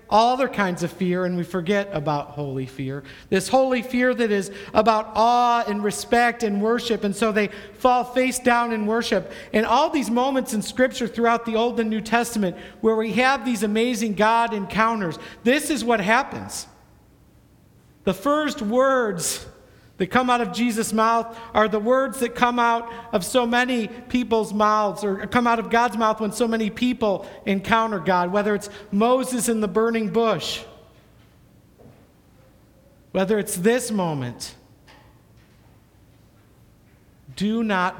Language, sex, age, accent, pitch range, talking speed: English, male, 50-69, American, 175-230 Hz, 155 wpm